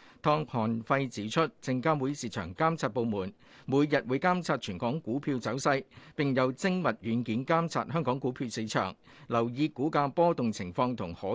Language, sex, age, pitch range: Chinese, male, 50-69, 120-160 Hz